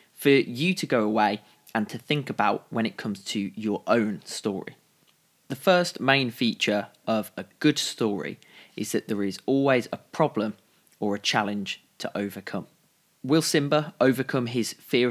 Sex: male